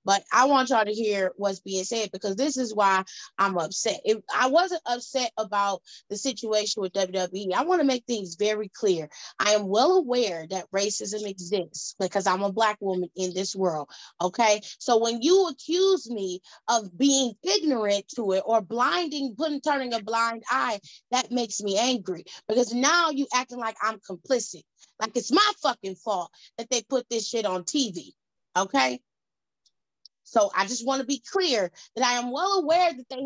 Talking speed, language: 180 wpm, English